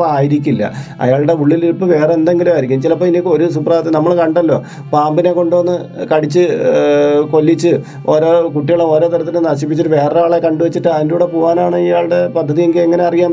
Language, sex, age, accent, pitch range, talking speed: Malayalam, male, 30-49, native, 145-175 Hz, 135 wpm